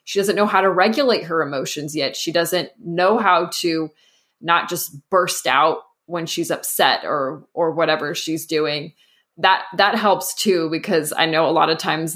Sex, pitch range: female, 160-185 Hz